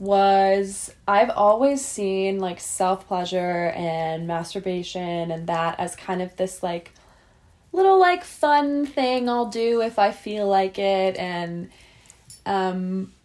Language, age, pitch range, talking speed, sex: English, 10-29, 185-215 Hz, 125 wpm, female